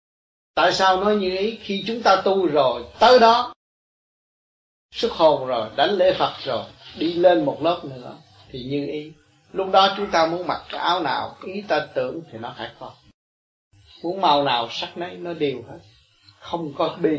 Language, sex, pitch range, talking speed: Vietnamese, male, 135-185 Hz, 190 wpm